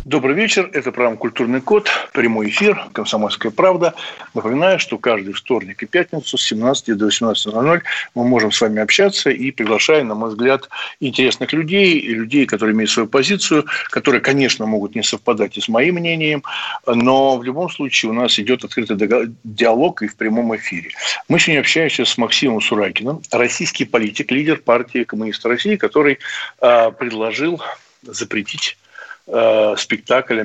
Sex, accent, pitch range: male, native, 110-145 Hz